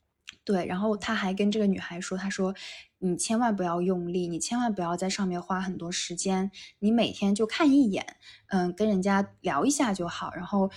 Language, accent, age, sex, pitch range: Chinese, native, 20-39, female, 180-230 Hz